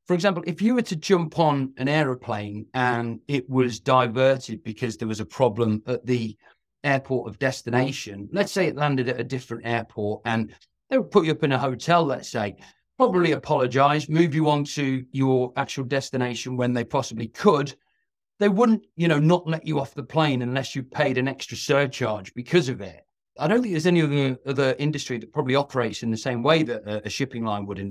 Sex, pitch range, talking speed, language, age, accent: male, 115-145 Hz, 205 wpm, English, 40-59, British